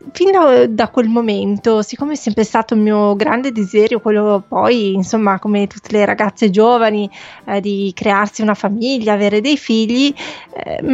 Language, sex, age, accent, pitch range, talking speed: Italian, female, 20-39, native, 215-245 Hz, 160 wpm